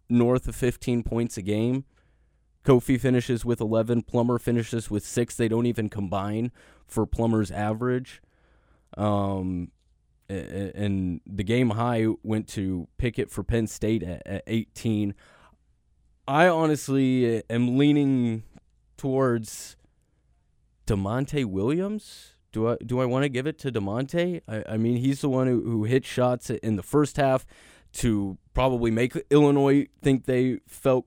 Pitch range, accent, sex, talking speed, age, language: 105-125 Hz, American, male, 140 wpm, 20-39, English